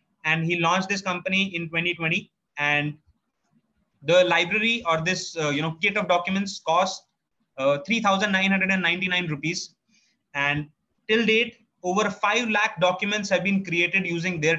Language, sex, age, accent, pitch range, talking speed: English, male, 20-39, Indian, 160-195 Hz, 140 wpm